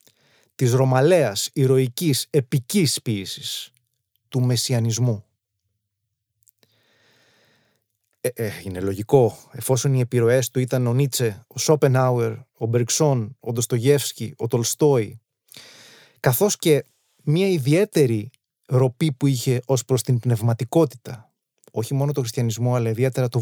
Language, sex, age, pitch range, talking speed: Greek, male, 30-49, 110-140 Hz, 115 wpm